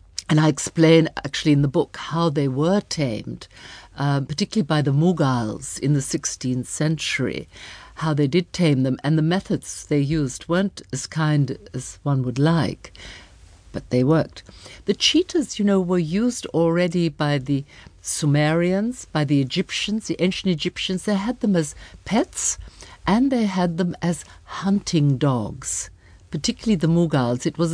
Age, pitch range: 60-79, 135-185 Hz